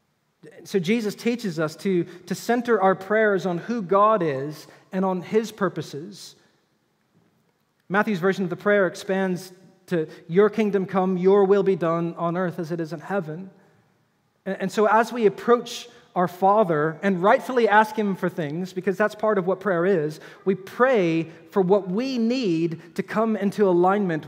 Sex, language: male, English